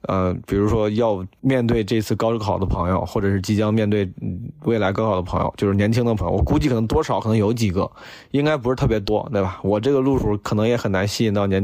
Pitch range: 105-140 Hz